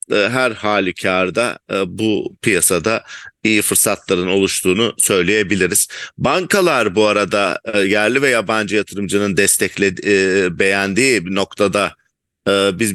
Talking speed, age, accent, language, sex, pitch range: 95 wpm, 50-69, Turkish, English, male, 100-120 Hz